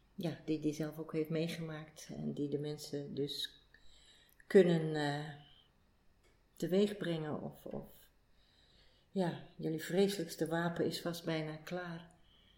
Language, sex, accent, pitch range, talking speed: Dutch, female, Dutch, 155-180 Hz, 125 wpm